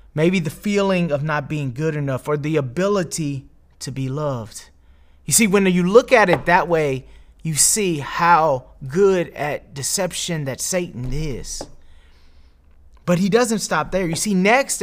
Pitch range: 130-180 Hz